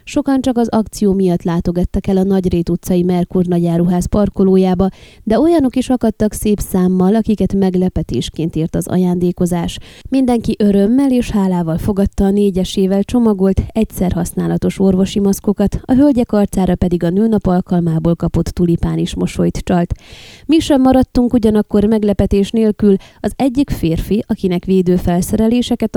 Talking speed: 140 wpm